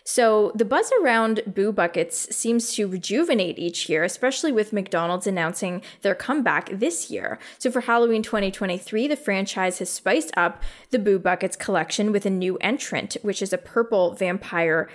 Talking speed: 165 wpm